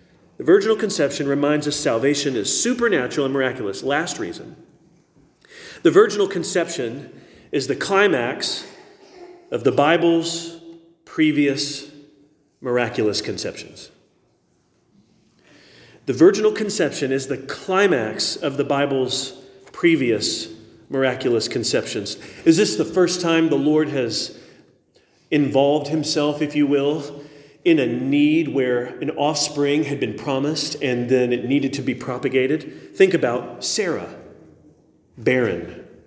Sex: male